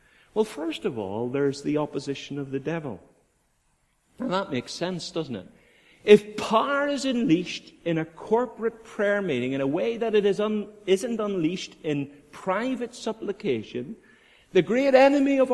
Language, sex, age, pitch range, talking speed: English, male, 50-69, 175-235 Hz, 155 wpm